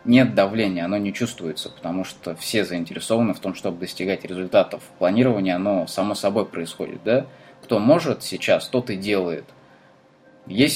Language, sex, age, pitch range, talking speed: Russian, male, 20-39, 95-115 Hz, 150 wpm